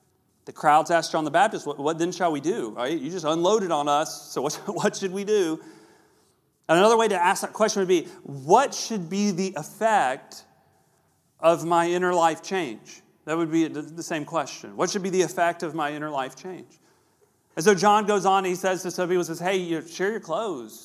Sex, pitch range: male, 165-210 Hz